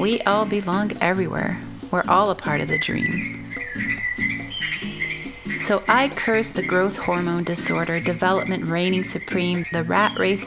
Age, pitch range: 30-49, 170-200 Hz